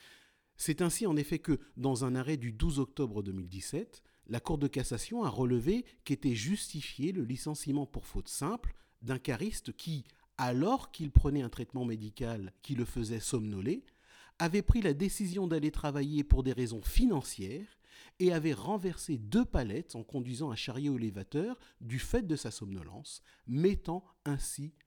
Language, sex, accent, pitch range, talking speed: French, male, French, 105-155 Hz, 155 wpm